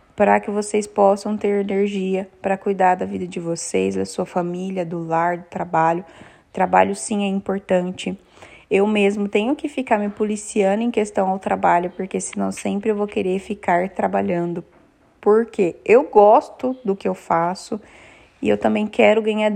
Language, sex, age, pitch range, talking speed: Portuguese, female, 20-39, 190-255 Hz, 165 wpm